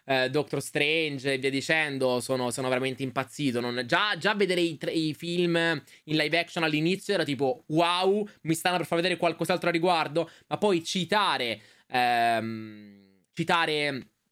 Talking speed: 155 wpm